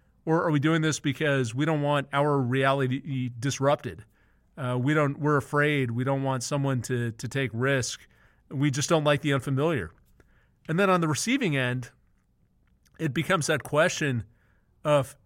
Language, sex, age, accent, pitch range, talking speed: English, male, 40-59, American, 125-150 Hz, 165 wpm